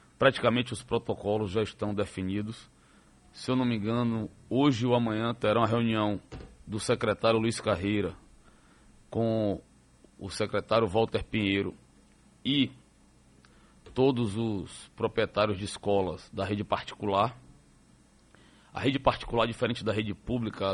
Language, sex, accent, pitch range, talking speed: Portuguese, male, Brazilian, 105-135 Hz, 120 wpm